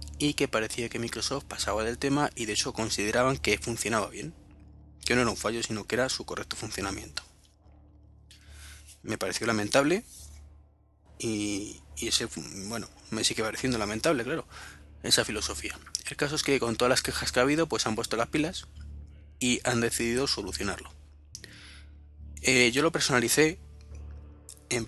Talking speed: 155 wpm